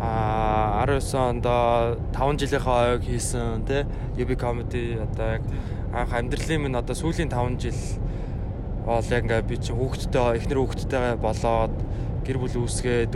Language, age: Korean, 20-39